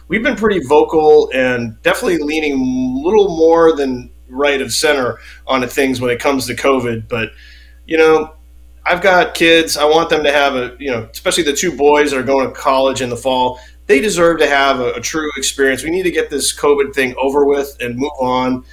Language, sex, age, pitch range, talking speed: English, male, 30-49, 120-145 Hz, 220 wpm